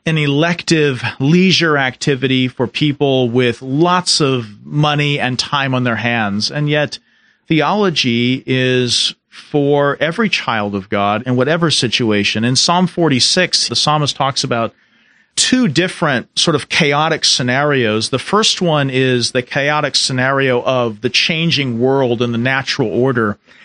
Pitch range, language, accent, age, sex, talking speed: 125-170 Hz, English, American, 40-59, male, 140 wpm